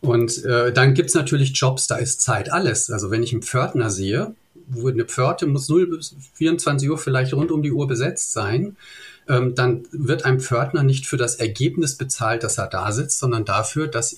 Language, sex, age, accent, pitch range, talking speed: German, male, 40-59, German, 120-145 Hz, 205 wpm